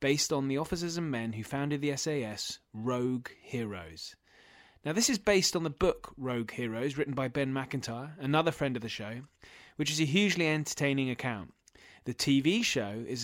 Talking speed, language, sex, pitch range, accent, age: 180 wpm, English, male, 125-155 Hz, British, 30-49